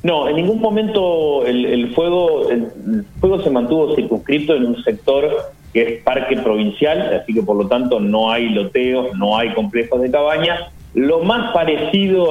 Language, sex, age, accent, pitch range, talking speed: Spanish, male, 40-59, Argentinian, 120-175 Hz, 175 wpm